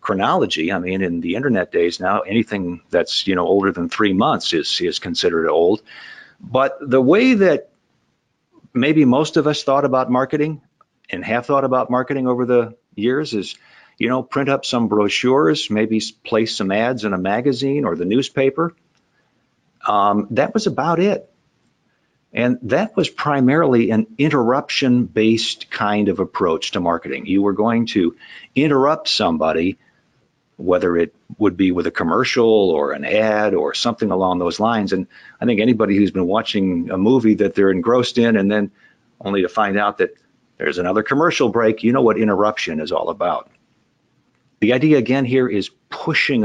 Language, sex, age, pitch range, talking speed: English, male, 50-69, 105-135 Hz, 170 wpm